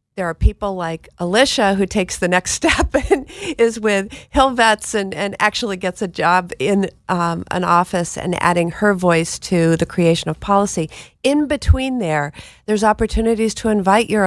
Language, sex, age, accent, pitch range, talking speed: English, female, 50-69, American, 170-205 Hz, 175 wpm